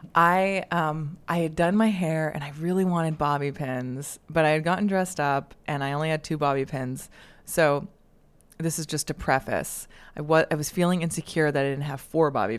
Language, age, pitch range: English, 20-39, 150-195 Hz